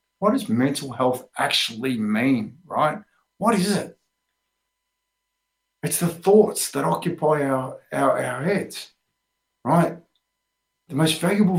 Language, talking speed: English, 115 wpm